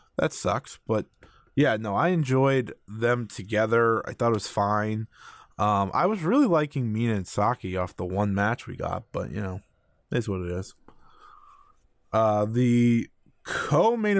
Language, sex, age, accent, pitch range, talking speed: English, male, 20-39, American, 100-120 Hz, 165 wpm